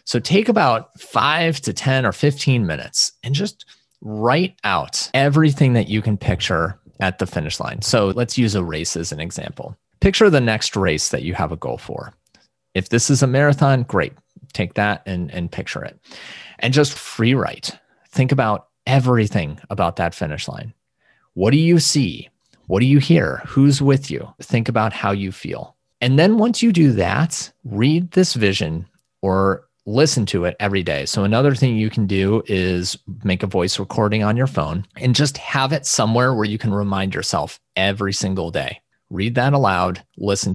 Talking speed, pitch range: 185 wpm, 100-135 Hz